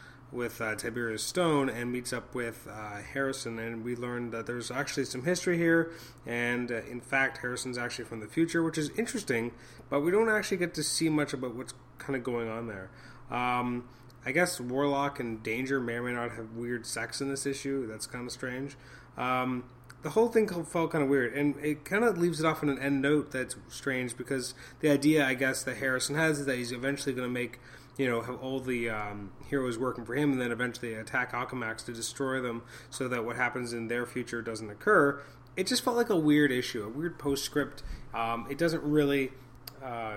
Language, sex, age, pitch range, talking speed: English, male, 30-49, 120-140 Hz, 215 wpm